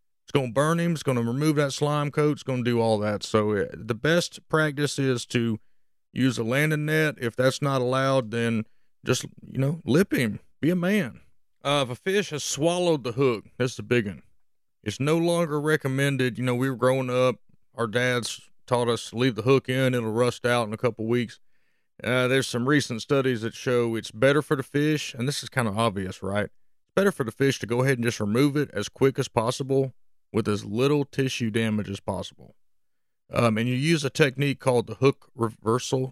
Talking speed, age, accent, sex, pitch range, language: 220 wpm, 40-59, American, male, 110-135 Hz, English